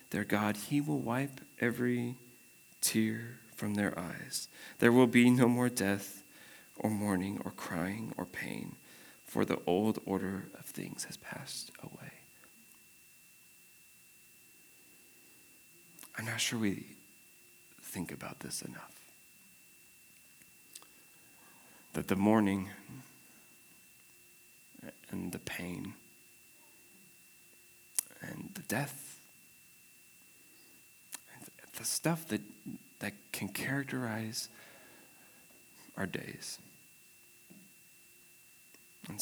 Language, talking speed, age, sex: English, 85 wpm, 40-59, male